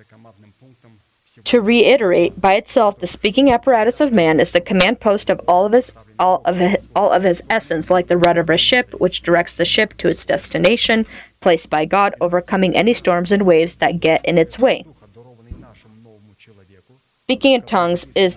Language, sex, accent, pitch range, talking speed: English, female, American, 165-205 Hz, 175 wpm